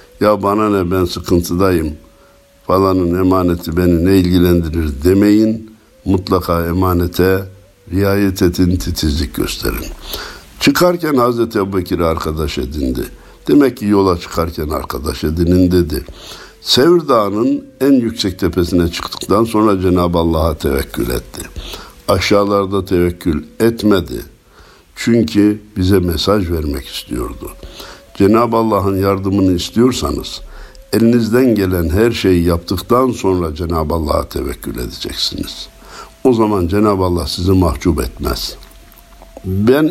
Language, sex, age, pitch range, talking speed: Turkish, male, 60-79, 90-105 Hz, 105 wpm